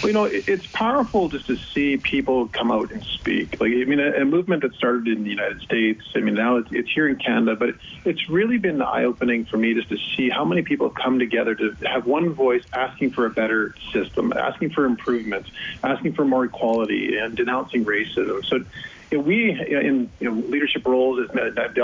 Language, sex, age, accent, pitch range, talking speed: English, male, 40-59, American, 120-150 Hz, 230 wpm